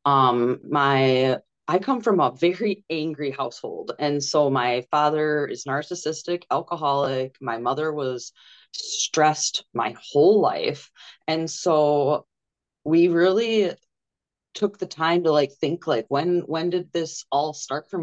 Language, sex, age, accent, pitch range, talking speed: English, female, 20-39, American, 145-185 Hz, 135 wpm